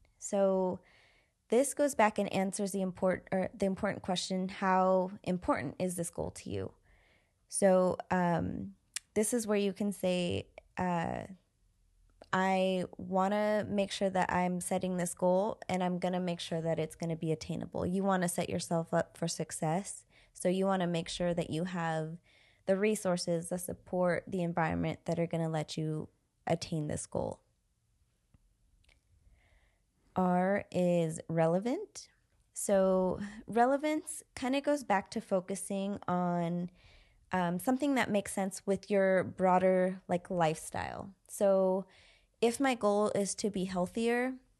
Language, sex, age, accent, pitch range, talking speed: English, female, 20-39, American, 175-200 Hz, 150 wpm